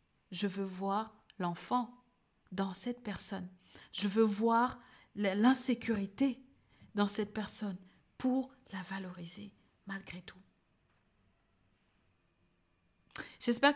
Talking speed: 85 wpm